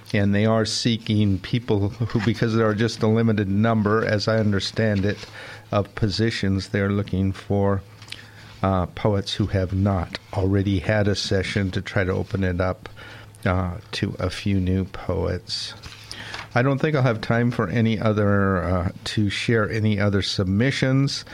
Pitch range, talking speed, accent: 100-110 Hz, 165 wpm, American